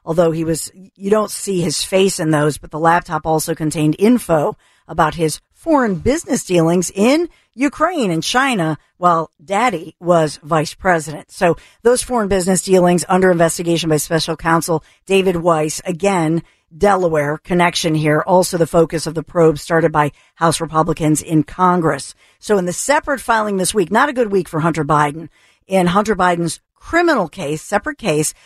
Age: 50-69